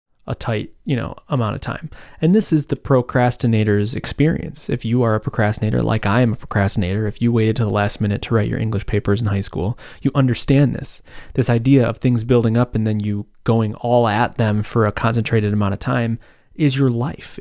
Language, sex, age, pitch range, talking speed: English, male, 20-39, 100-125 Hz, 215 wpm